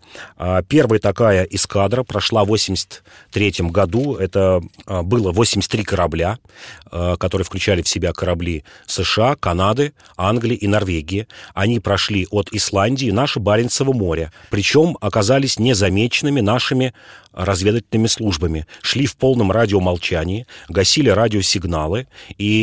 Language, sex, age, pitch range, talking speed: Russian, male, 30-49, 95-120 Hz, 110 wpm